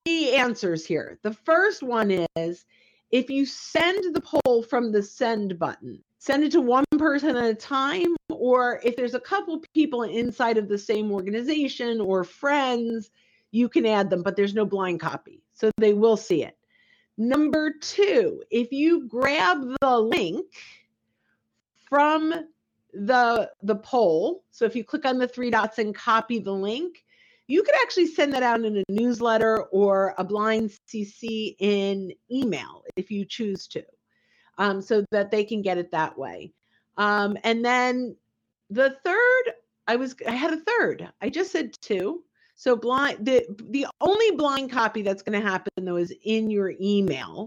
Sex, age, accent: female, 50-69, American